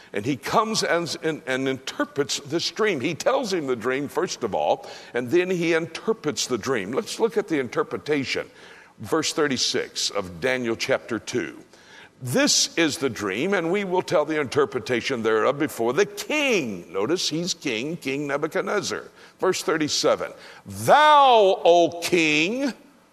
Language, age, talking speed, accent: English, 60-79, 150 wpm, American